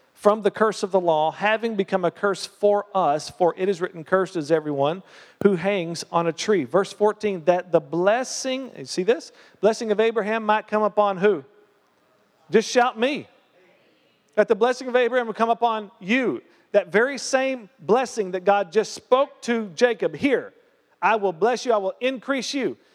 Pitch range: 200-280 Hz